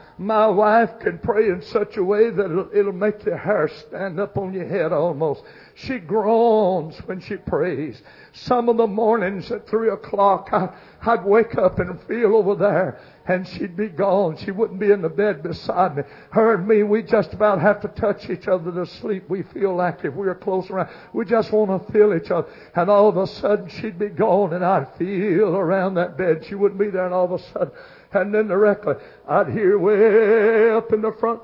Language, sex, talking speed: English, male, 215 wpm